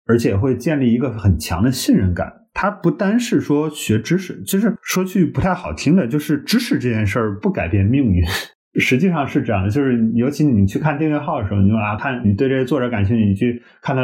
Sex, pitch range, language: male, 100-135 Hz, Chinese